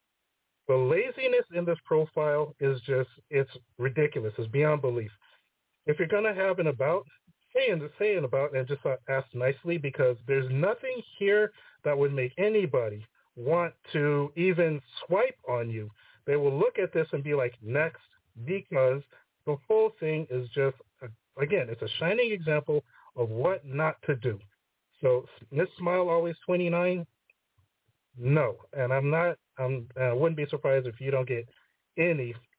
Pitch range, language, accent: 125-165 Hz, English, American